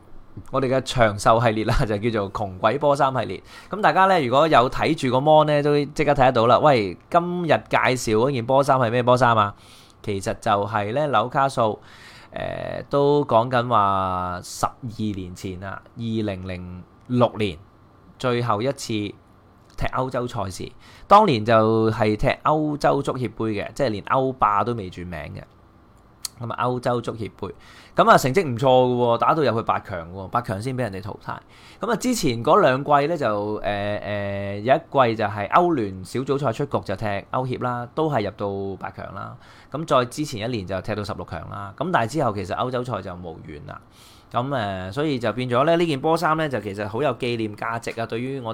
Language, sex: Chinese, male